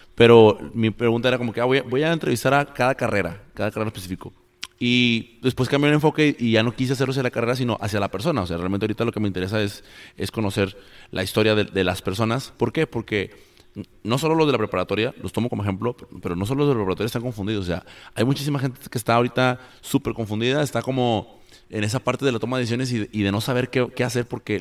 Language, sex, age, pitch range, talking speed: Spanish, male, 30-49, 100-125 Hz, 250 wpm